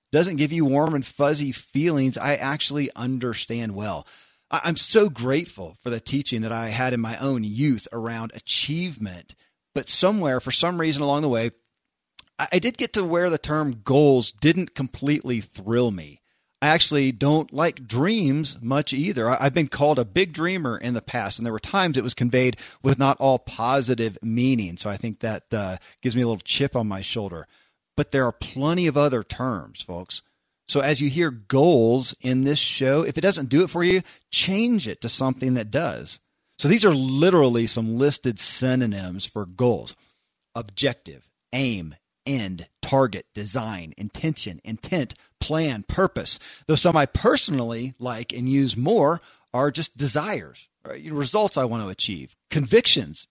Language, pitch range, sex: English, 115-150 Hz, male